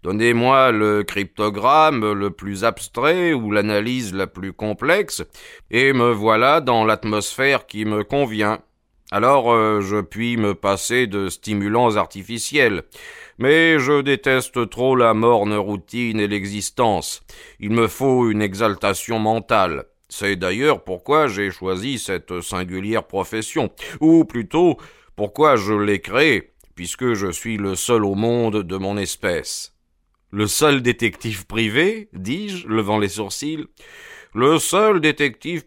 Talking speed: 130 wpm